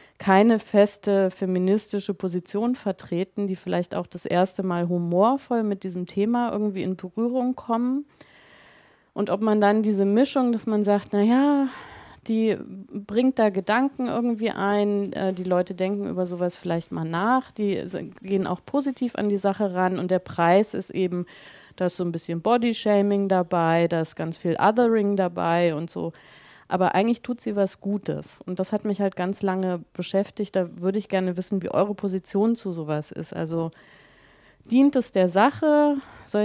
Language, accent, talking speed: German, German, 170 wpm